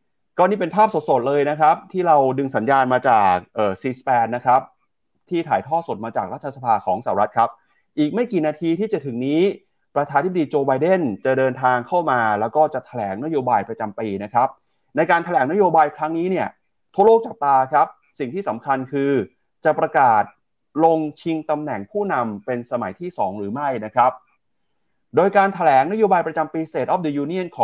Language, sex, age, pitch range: Thai, male, 30-49, 125-170 Hz